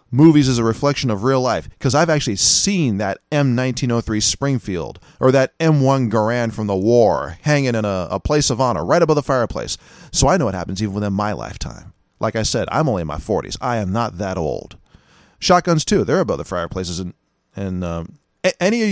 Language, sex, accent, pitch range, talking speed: English, male, American, 100-155 Hz, 205 wpm